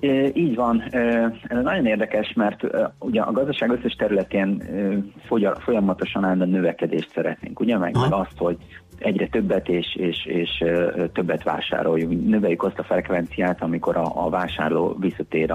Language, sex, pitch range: Hungarian, male, 85-105 Hz